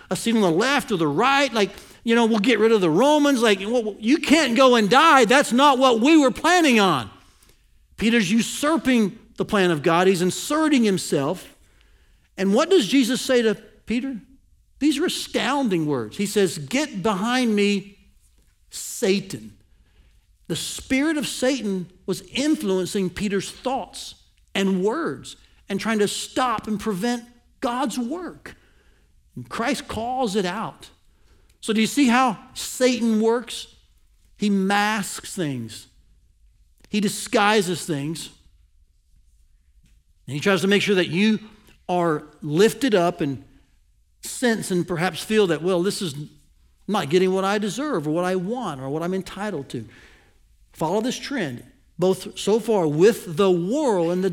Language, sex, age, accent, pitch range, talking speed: English, male, 60-79, American, 170-240 Hz, 150 wpm